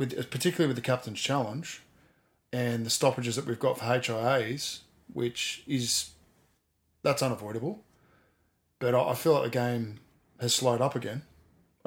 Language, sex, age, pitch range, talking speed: English, male, 20-39, 115-130 Hz, 140 wpm